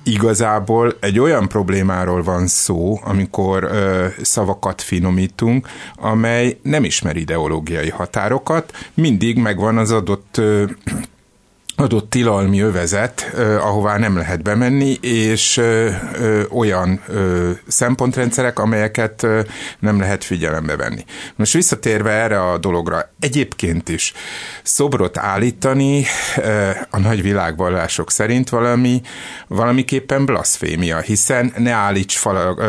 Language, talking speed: Hungarian, 100 wpm